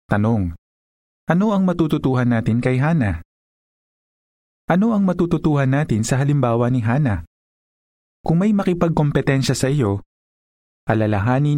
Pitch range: 100-145 Hz